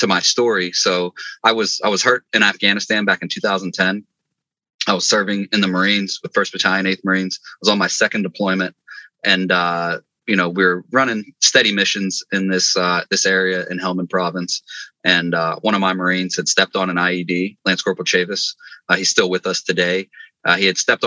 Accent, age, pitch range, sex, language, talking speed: American, 20-39, 90-95 Hz, male, English, 205 wpm